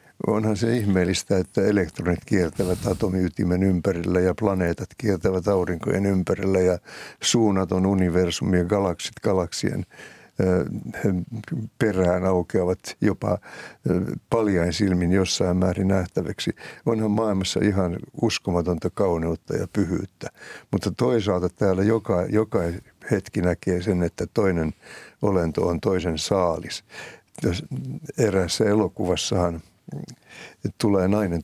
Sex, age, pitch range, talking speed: male, 60-79, 90-105 Hz, 100 wpm